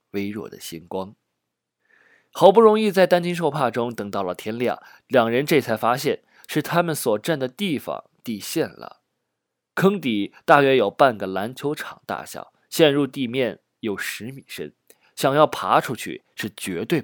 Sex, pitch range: male, 120-170 Hz